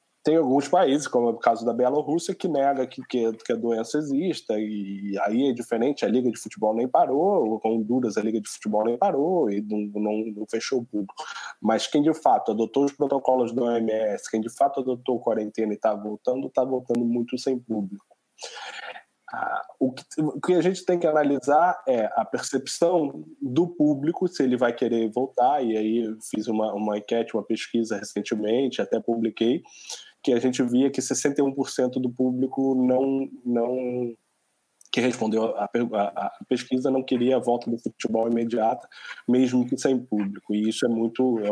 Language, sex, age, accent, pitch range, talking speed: Portuguese, male, 20-39, Brazilian, 110-130 Hz, 185 wpm